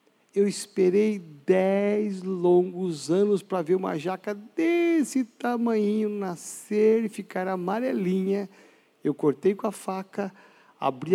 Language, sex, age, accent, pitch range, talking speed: Portuguese, male, 50-69, Brazilian, 155-205 Hz, 115 wpm